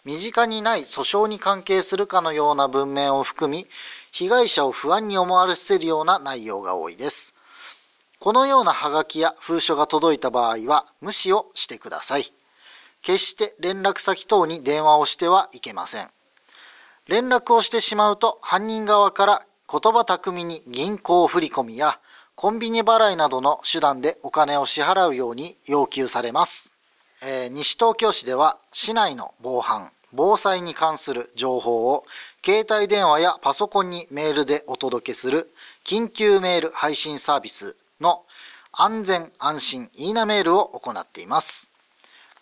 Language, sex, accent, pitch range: Japanese, male, native, 150-220 Hz